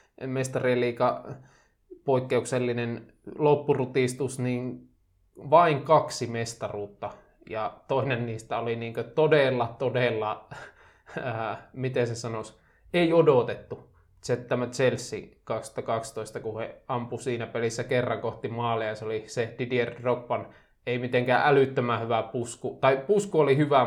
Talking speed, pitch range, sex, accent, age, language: 115 wpm, 115-130 Hz, male, native, 20-39, Finnish